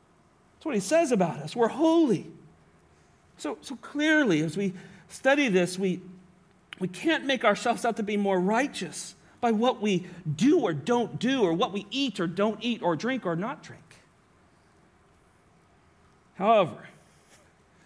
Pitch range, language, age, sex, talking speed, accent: 175-230 Hz, English, 40-59, male, 150 wpm, American